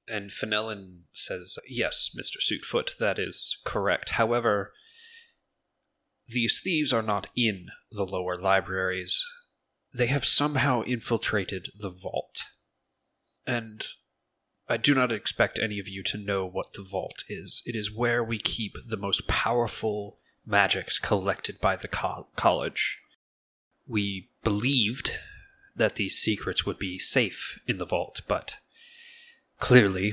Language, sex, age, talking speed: English, male, 20-39, 125 wpm